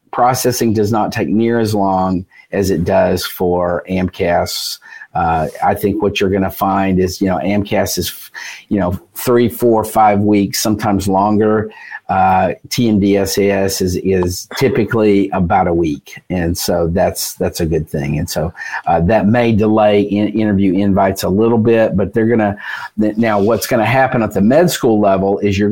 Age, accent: 50-69, American